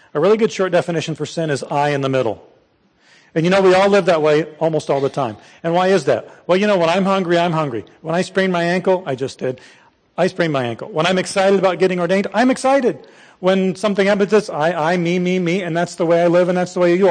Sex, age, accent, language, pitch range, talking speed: male, 40-59, American, English, 150-195 Hz, 265 wpm